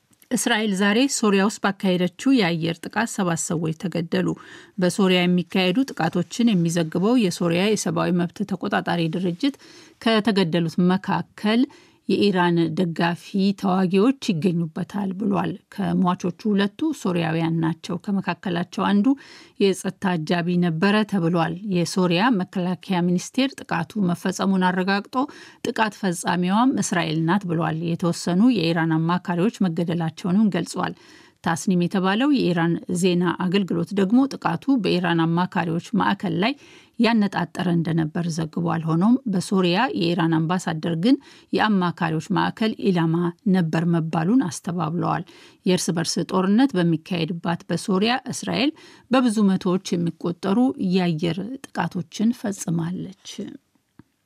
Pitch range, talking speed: 170-215 Hz, 95 wpm